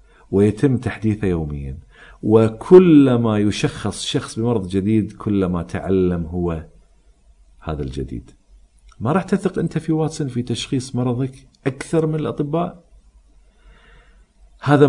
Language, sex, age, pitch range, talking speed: Arabic, male, 50-69, 85-130 Hz, 105 wpm